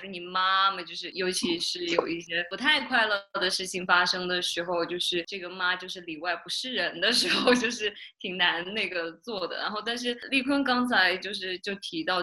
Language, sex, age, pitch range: Chinese, female, 20-39, 180-235 Hz